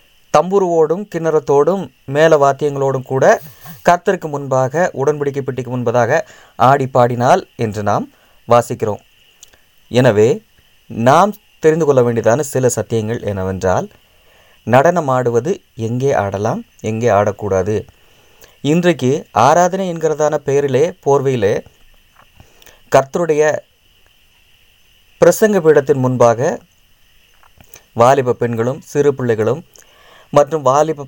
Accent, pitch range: native, 120-155 Hz